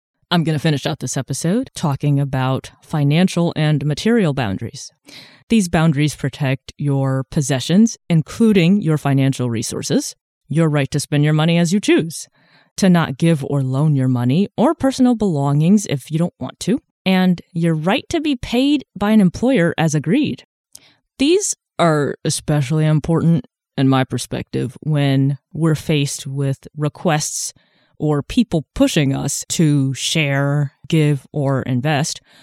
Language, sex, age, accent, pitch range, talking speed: English, female, 20-39, American, 140-180 Hz, 145 wpm